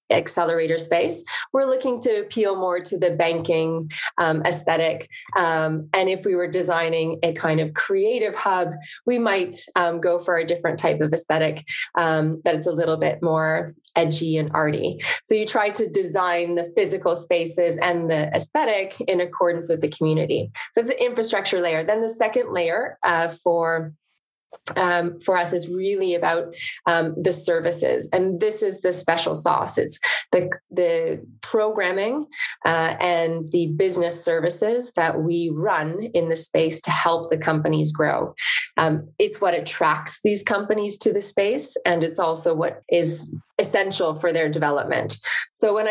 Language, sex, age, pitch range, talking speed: English, female, 20-39, 165-205 Hz, 160 wpm